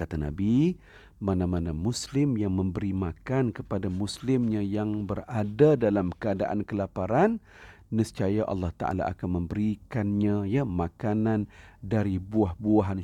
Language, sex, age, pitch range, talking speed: Malay, male, 40-59, 95-110 Hz, 105 wpm